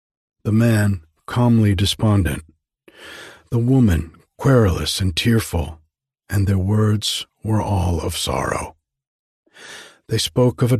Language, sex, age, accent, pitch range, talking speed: English, male, 50-69, American, 85-110 Hz, 110 wpm